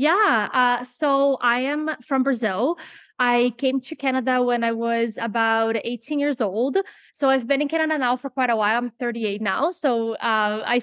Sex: female